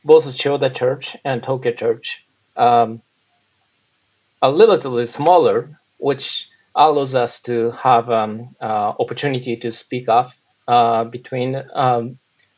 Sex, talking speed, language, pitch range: male, 125 wpm, English, 120-160 Hz